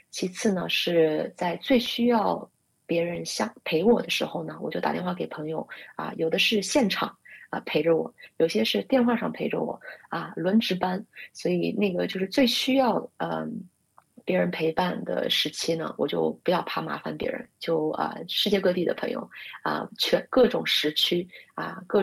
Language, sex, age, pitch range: Chinese, female, 30-49, 170-225 Hz